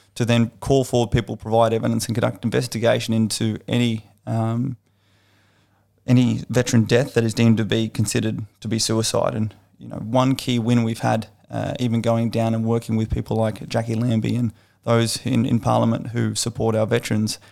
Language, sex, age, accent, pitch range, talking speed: English, male, 30-49, Australian, 110-120 Hz, 180 wpm